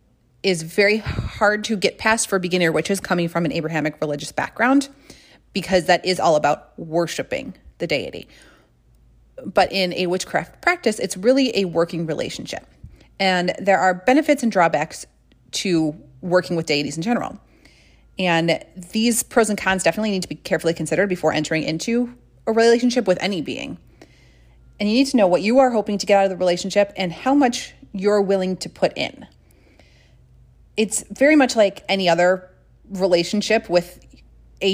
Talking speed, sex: 165 wpm, female